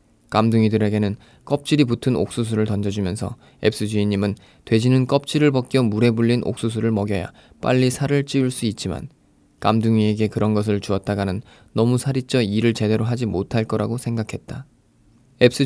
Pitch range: 100-120 Hz